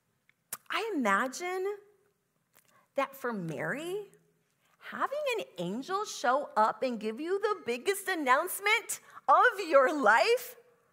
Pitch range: 210-315 Hz